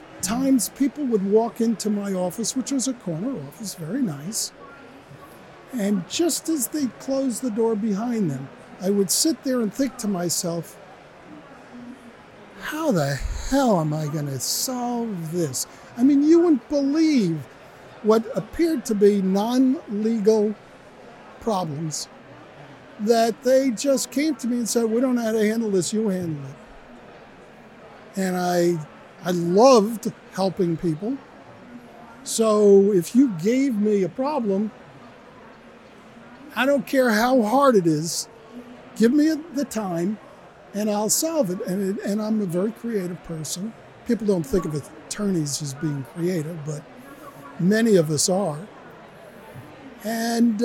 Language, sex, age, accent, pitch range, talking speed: English, male, 50-69, American, 185-250 Hz, 140 wpm